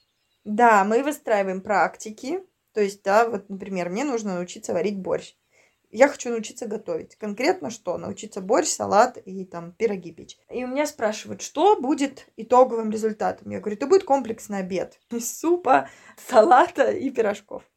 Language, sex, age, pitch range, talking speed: Russian, female, 20-39, 210-250 Hz, 150 wpm